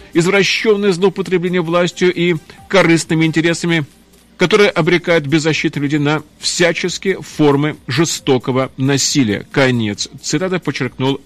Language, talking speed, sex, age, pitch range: Russian, 95 wpm, male, 40-59, 140-180 Hz